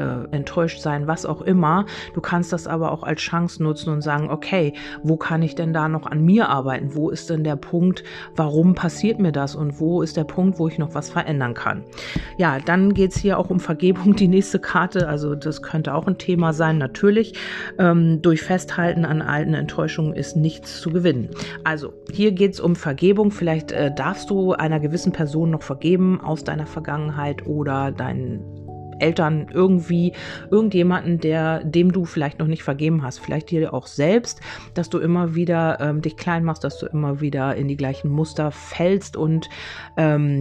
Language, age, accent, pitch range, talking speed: German, 40-59, German, 150-175 Hz, 185 wpm